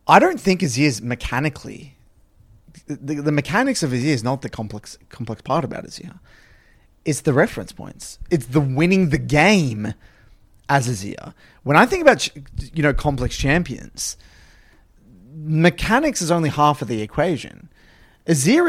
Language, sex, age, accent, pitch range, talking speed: English, male, 30-49, Australian, 130-170 Hz, 150 wpm